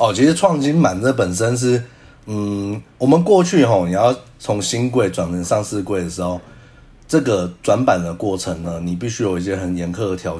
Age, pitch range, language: 30-49, 90-125 Hz, Chinese